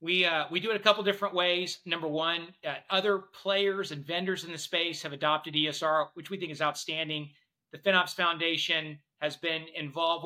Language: English